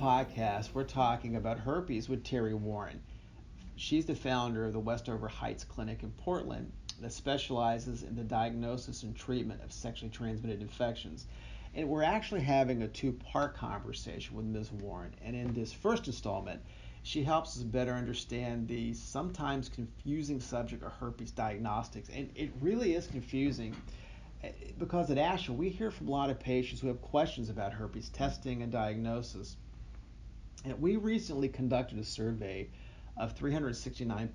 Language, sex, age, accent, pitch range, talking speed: English, male, 40-59, American, 110-130 Hz, 150 wpm